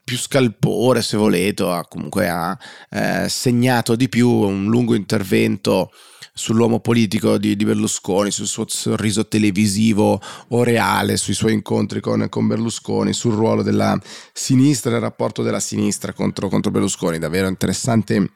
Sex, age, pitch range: male, 30-49, 100-120 Hz